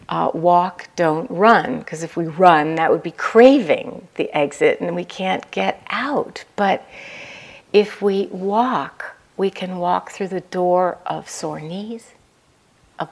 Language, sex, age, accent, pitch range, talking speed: English, female, 60-79, American, 155-190 Hz, 150 wpm